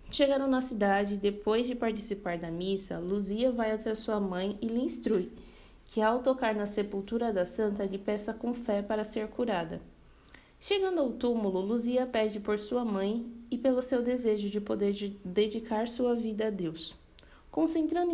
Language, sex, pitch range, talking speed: Portuguese, female, 195-240 Hz, 165 wpm